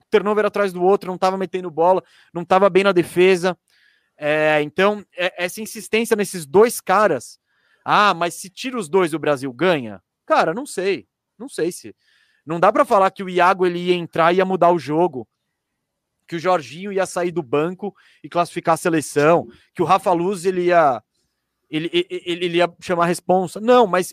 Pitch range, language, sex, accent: 170-225 Hz, Portuguese, male, Brazilian